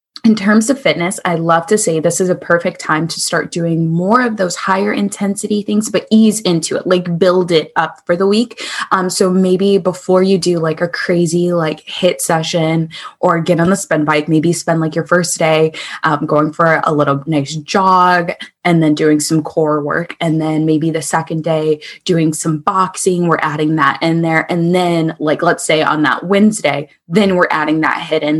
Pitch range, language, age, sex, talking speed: 160-190 Hz, English, 10-29, female, 205 wpm